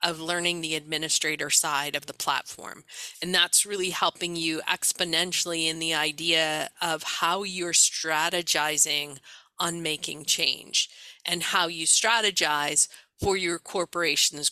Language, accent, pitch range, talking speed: English, American, 160-200 Hz, 130 wpm